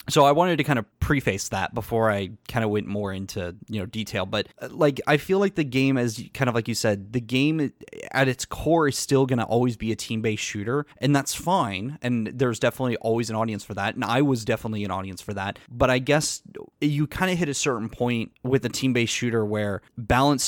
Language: English